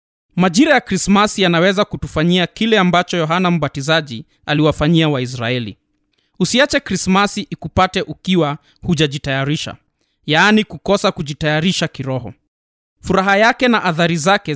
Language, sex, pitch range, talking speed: Swahili, male, 150-210 Hz, 105 wpm